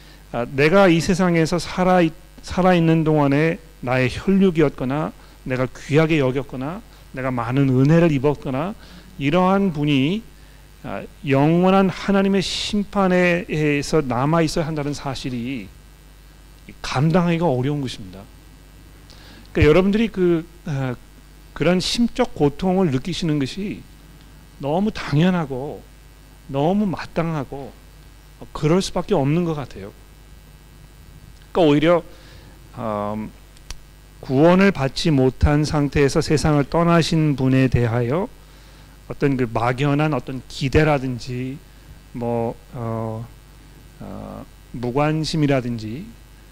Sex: male